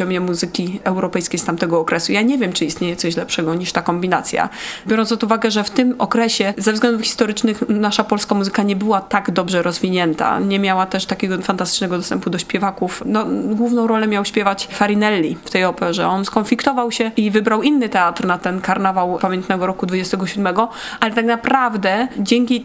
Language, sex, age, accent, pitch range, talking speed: Polish, female, 20-39, native, 185-225 Hz, 180 wpm